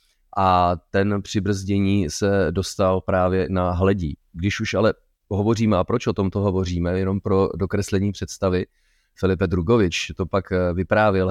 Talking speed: 145 wpm